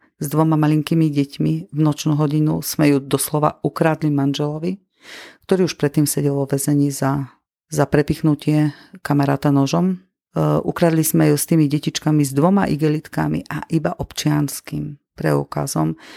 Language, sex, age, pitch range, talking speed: Slovak, female, 40-59, 140-160 Hz, 135 wpm